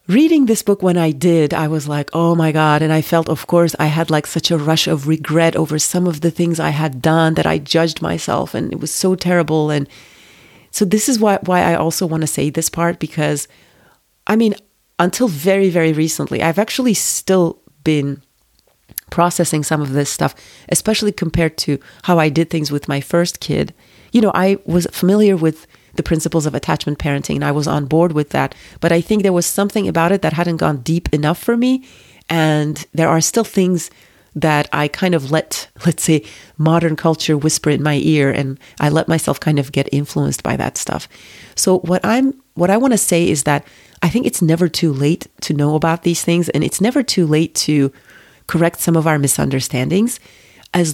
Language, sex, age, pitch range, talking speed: English, female, 30-49, 150-180 Hz, 210 wpm